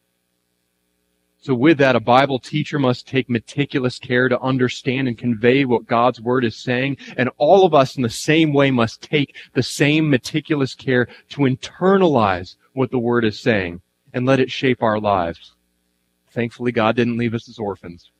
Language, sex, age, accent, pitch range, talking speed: English, male, 30-49, American, 90-130 Hz, 175 wpm